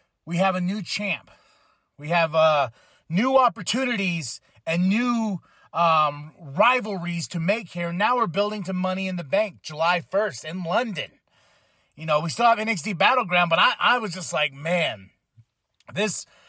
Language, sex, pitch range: English, male, 170-230 Hz